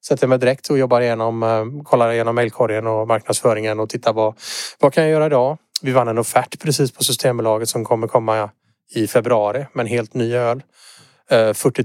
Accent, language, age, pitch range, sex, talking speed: Norwegian, Swedish, 30-49, 110-145 Hz, male, 185 wpm